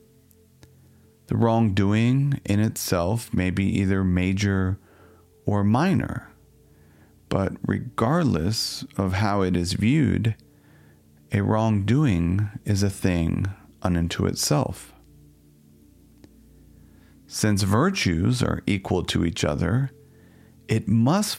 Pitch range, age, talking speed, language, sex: 90-120 Hz, 40-59, 95 wpm, English, male